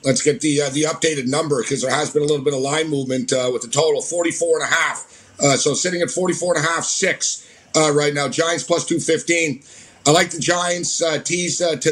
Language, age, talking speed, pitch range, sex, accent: English, 50-69, 240 wpm, 150-175 Hz, male, American